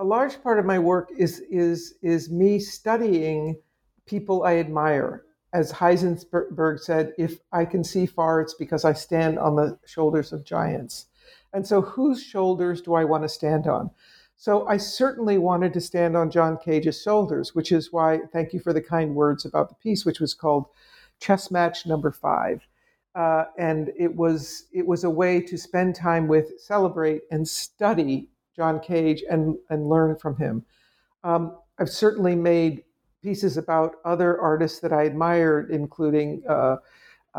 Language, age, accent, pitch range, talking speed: English, 60-79, American, 155-185 Hz, 170 wpm